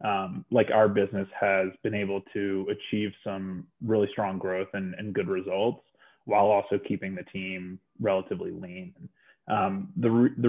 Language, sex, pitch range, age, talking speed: English, male, 95-110 Hz, 20-39, 160 wpm